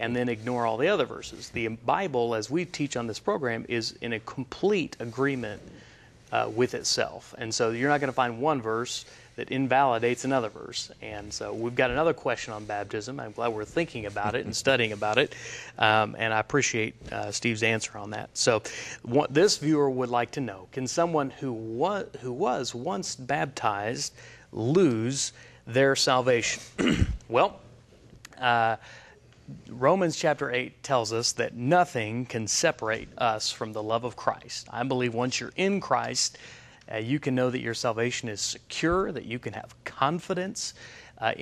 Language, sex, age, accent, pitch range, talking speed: English, male, 30-49, American, 115-145 Hz, 170 wpm